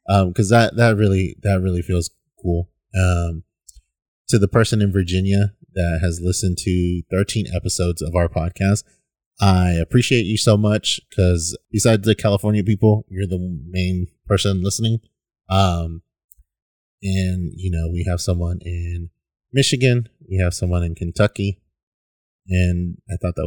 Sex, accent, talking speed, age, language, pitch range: male, American, 145 wpm, 30-49, English, 85-100 Hz